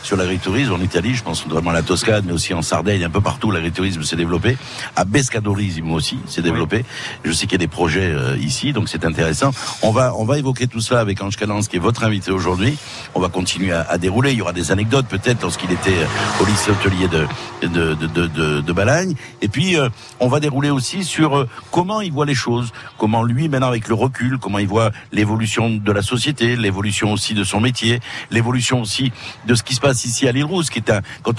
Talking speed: 235 wpm